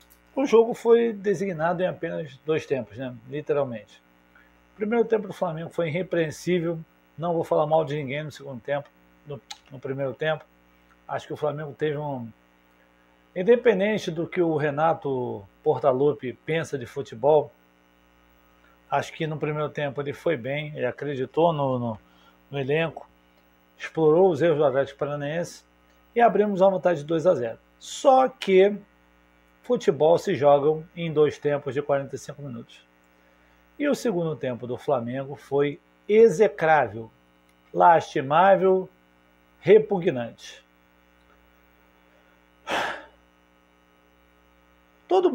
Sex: male